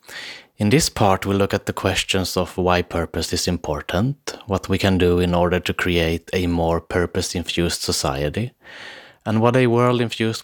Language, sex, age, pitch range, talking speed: English, male, 30-49, 80-100 Hz, 170 wpm